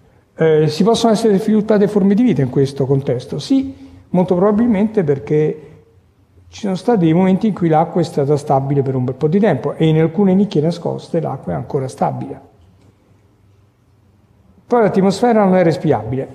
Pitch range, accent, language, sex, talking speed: 130-170 Hz, native, Italian, male, 170 wpm